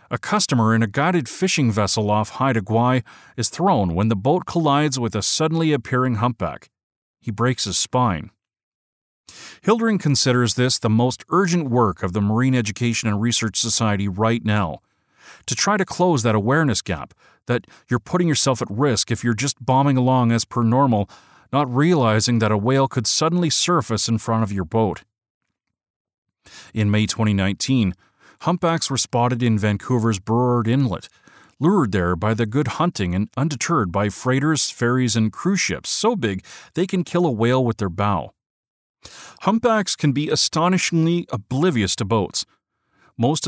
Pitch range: 110-145 Hz